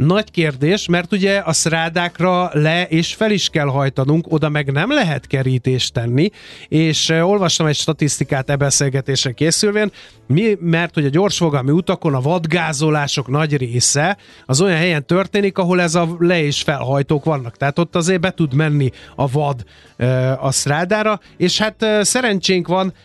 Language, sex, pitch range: Hungarian, male, 140-175 Hz